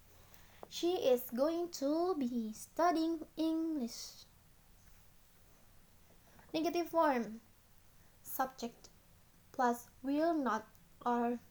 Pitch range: 230-285 Hz